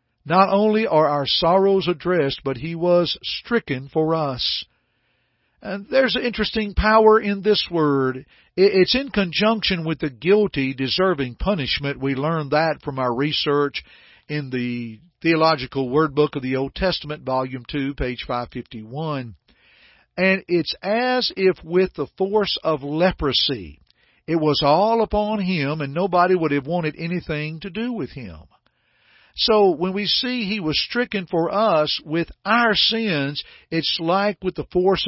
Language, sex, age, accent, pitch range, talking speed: English, male, 50-69, American, 145-205 Hz, 150 wpm